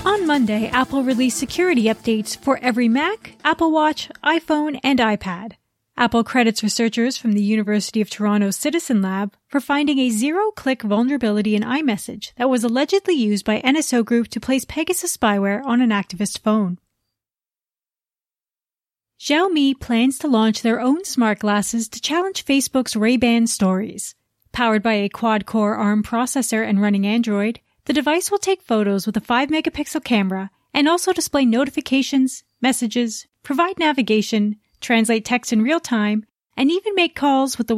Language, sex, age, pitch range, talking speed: English, female, 30-49, 215-280 Hz, 150 wpm